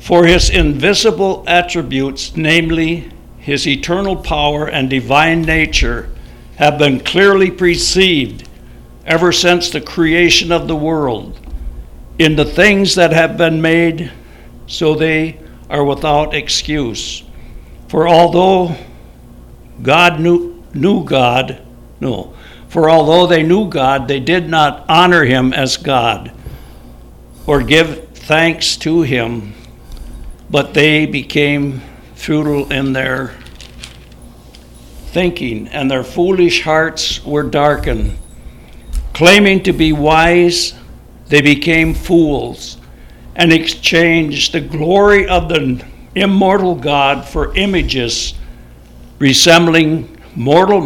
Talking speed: 105 wpm